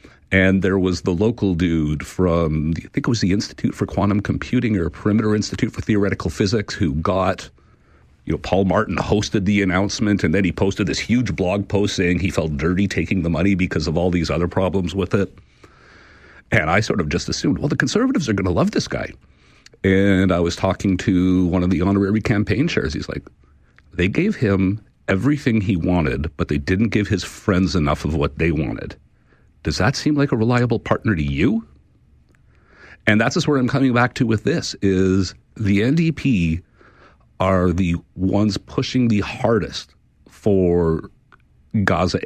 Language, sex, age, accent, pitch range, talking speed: English, male, 50-69, American, 90-110 Hz, 185 wpm